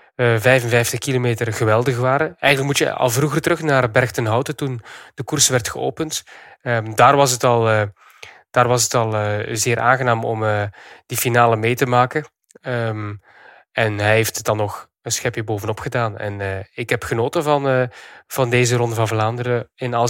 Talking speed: 185 wpm